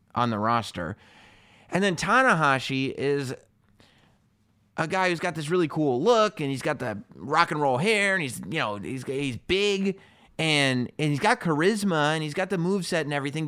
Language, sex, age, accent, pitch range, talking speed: English, male, 30-49, American, 115-160 Hz, 185 wpm